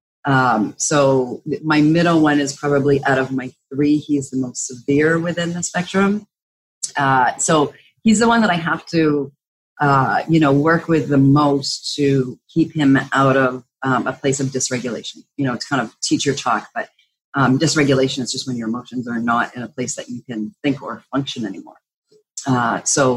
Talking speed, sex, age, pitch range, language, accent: 190 wpm, female, 40-59, 135-165 Hz, English, American